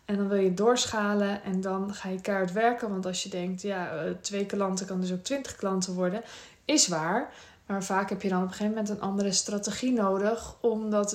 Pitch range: 185-230 Hz